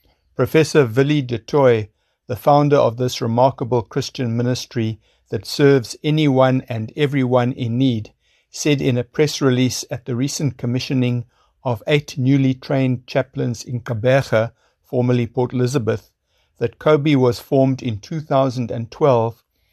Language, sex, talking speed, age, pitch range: English, male, 130 wpm, 60-79, 120-135 Hz